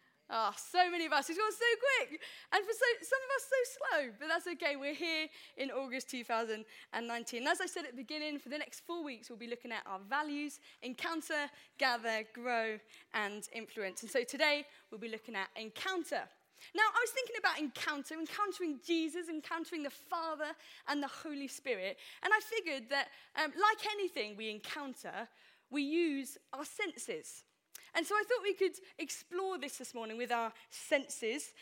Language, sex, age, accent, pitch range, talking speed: English, female, 10-29, British, 275-395 Hz, 185 wpm